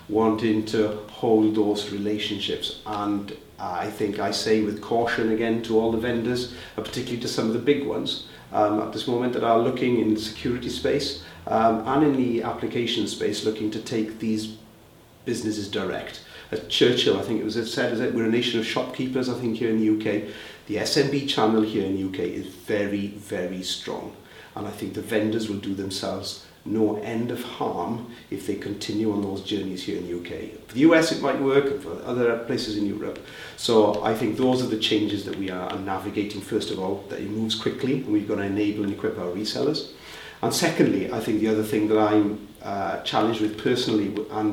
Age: 40-59